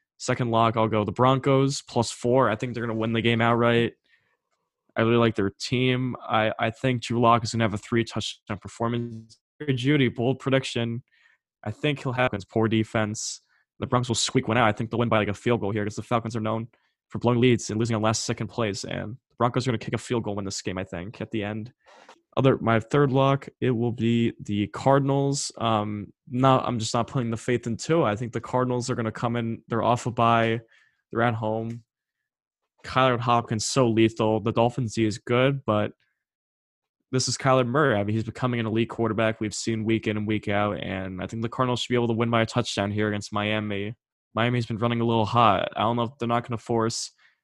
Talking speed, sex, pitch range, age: 235 wpm, male, 110-125 Hz, 20-39